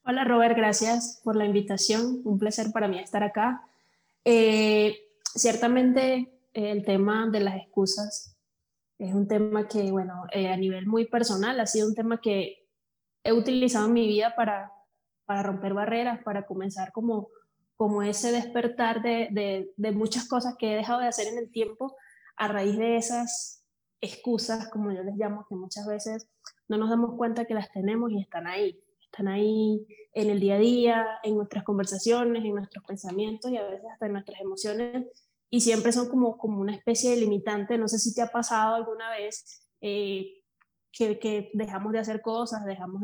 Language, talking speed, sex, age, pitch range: Spanish, 180 wpm, female, 20-39, 200-230 Hz